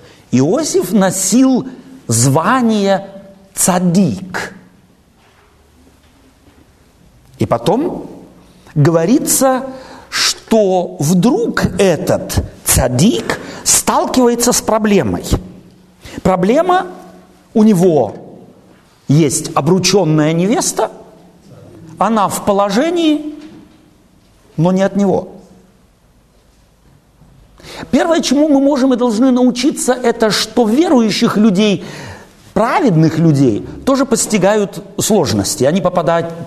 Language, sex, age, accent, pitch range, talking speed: Russian, male, 50-69, native, 165-240 Hz, 75 wpm